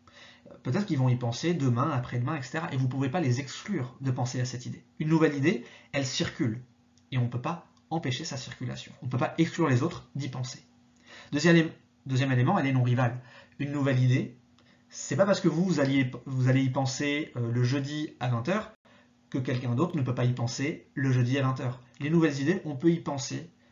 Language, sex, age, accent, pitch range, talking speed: French, male, 30-49, French, 125-160 Hz, 220 wpm